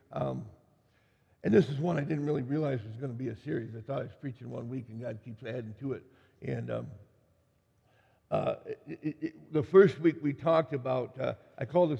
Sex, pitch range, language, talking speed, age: male, 130-165 Hz, English, 220 wpm, 60-79